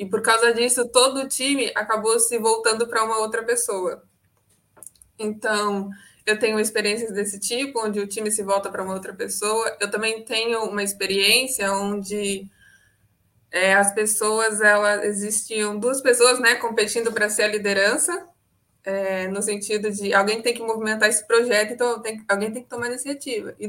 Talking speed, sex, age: 165 wpm, female, 20-39